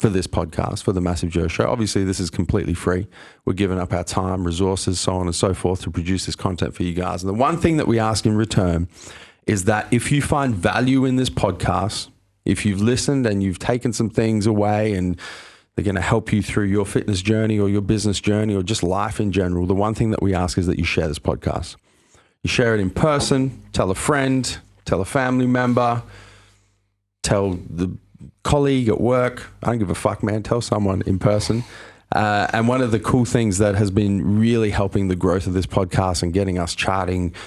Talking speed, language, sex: 220 wpm, English, male